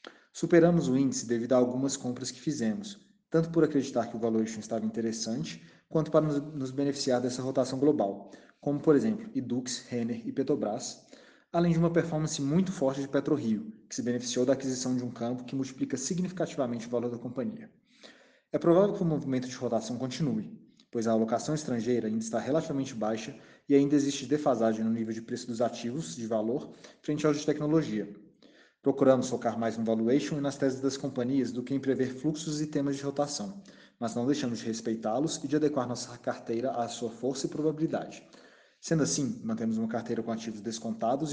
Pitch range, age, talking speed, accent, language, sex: 120-150 Hz, 20-39, 185 wpm, Brazilian, Portuguese, male